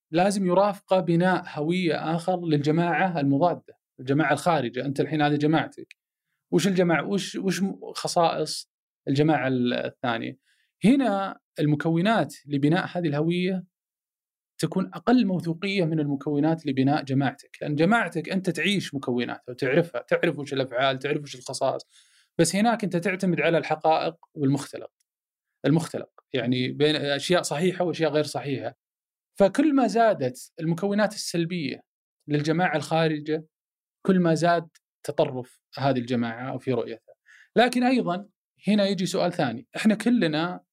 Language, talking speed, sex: Arabic, 120 wpm, male